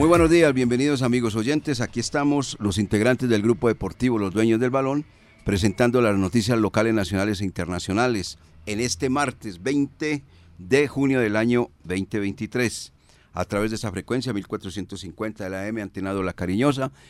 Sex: male